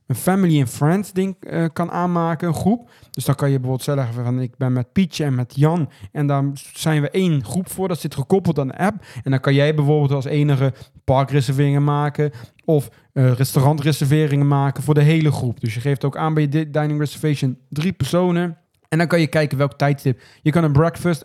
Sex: male